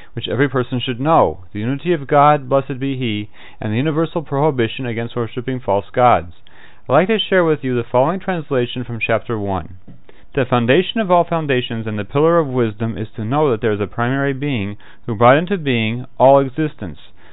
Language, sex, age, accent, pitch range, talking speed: English, male, 40-59, American, 115-150 Hz, 195 wpm